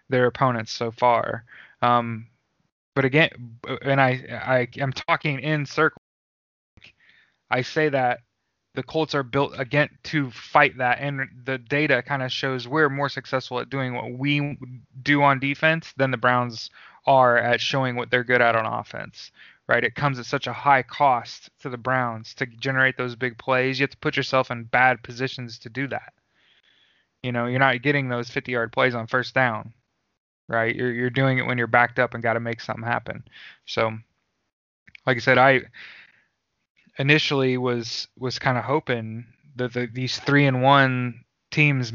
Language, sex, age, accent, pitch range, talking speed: English, male, 20-39, American, 120-135 Hz, 175 wpm